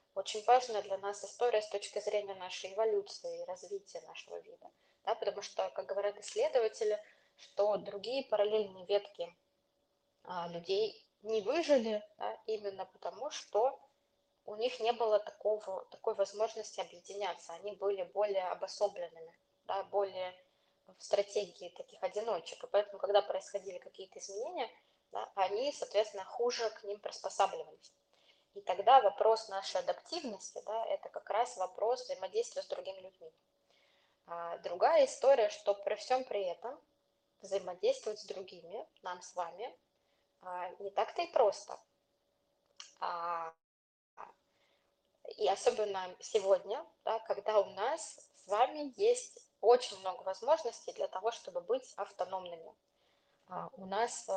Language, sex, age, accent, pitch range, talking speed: Russian, female, 20-39, native, 195-255 Hz, 125 wpm